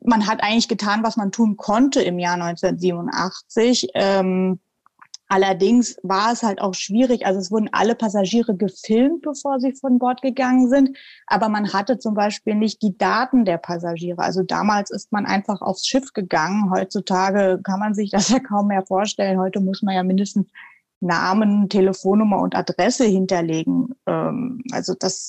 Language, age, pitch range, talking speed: German, 20-39, 190-220 Hz, 165 wpm